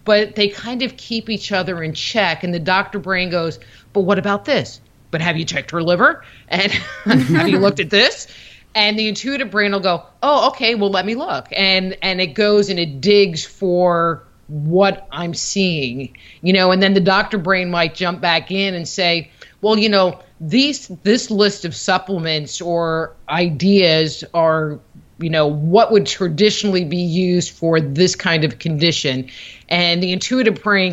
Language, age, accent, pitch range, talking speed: English, 30-49, American, 160-200 Hz, 180 wpm